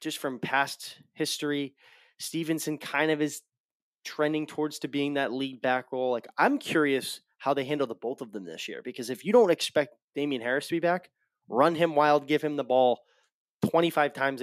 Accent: American